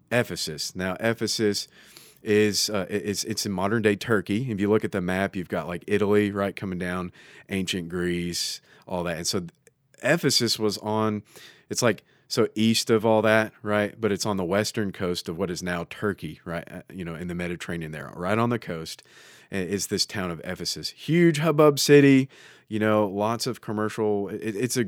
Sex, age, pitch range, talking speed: male, 30-49, 90-115 Hz, 185 wpm